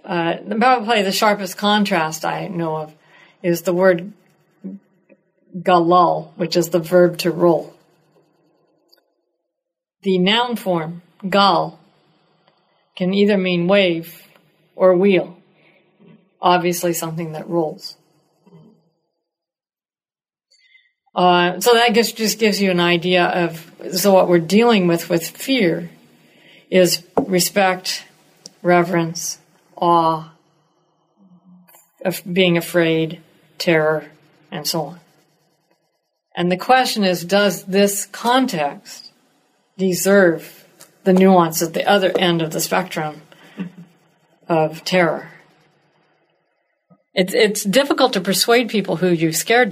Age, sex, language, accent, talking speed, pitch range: 50-69, female, English, American, 105 wpm, 170-195 Hz